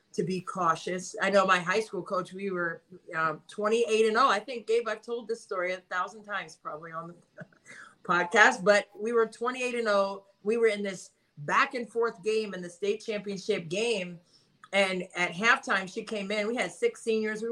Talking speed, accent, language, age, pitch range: 190 wpm, American, English, 40-59, 190-240 Hz